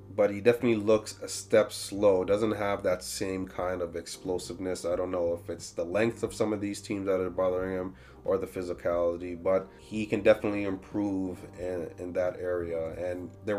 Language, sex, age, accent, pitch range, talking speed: English, male, 30-49, American, 95-115 Hz, 195 wpm